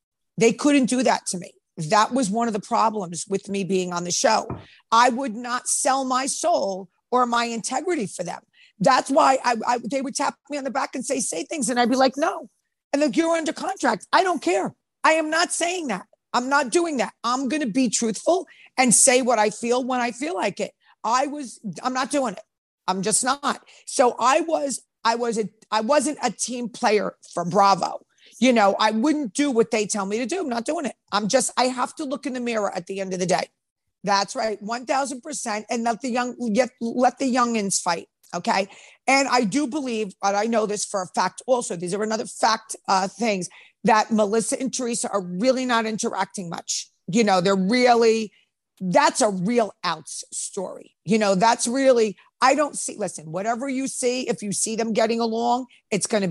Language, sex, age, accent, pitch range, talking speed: English, female, 50-69, American, 205-265 Hz, 215 wpm